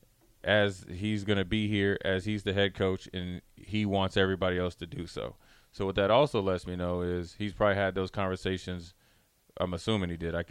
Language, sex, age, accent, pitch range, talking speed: English, male, 20-39, American, 90-105 Hz, 205 wpm